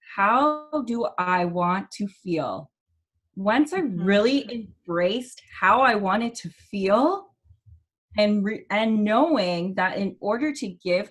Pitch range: 175-225 Hz